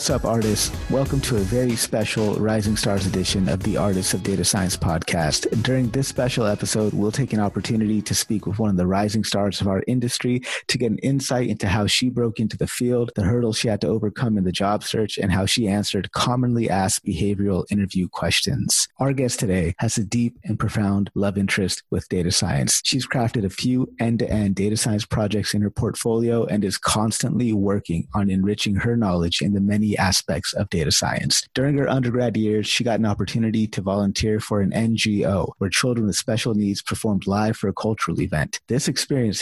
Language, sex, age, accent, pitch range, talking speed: English, male, 30-49, American, 100-120 Hz, 200 wpm